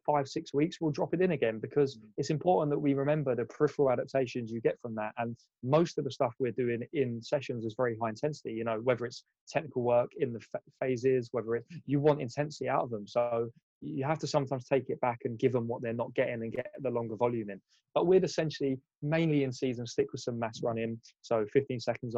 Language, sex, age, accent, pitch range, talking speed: English, male, 20-39, British, 115-140 Hz, 235 wpm